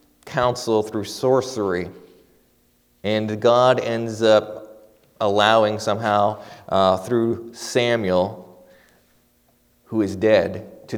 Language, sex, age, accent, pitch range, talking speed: English, male, 30-49, American, 95-115 Hz, 85 wpm